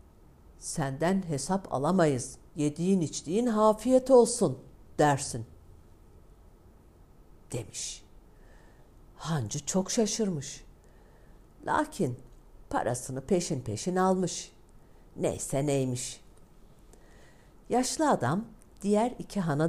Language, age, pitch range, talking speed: Turkish, 60-79, 110-170 Hz, 75 wpm